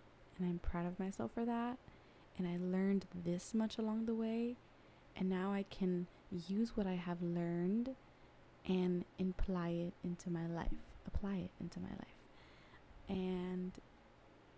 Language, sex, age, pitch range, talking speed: English, female, 20-39, 175-210 Hz, 150 wpm